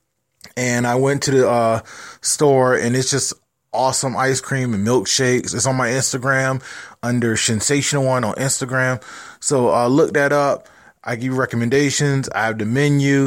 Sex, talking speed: male, 165 wpm